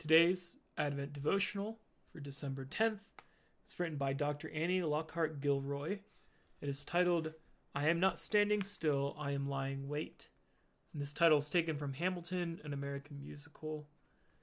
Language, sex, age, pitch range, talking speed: English, male, 30-49, 145-175 Hz, 140 wpm